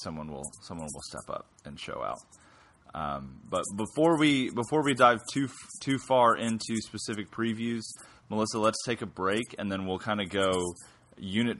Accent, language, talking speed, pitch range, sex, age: American, English, 175 wpm, 80-105 Hz, male, 30-49